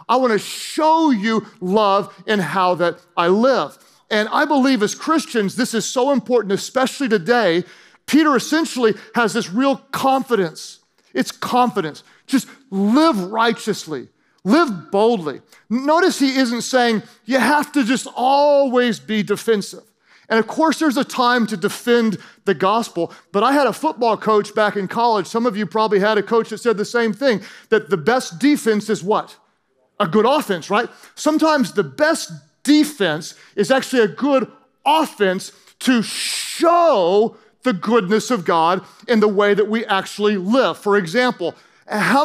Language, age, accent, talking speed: English, 40-59, American, 160 wpm